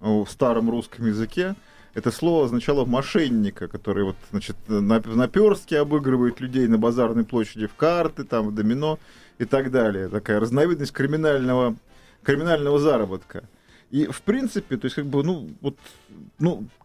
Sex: male